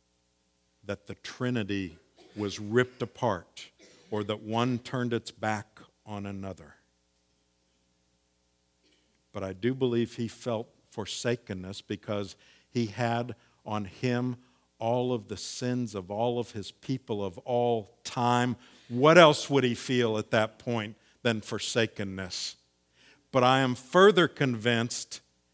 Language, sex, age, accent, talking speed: English, male, 50-69, American, 125 wpm